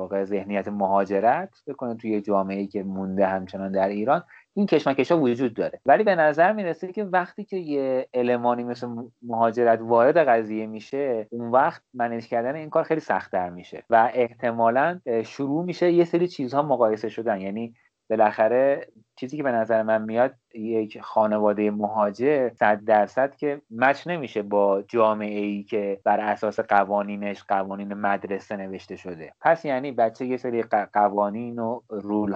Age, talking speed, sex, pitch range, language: 30-49, 150 wpm, male, 105-140 Hz, Persian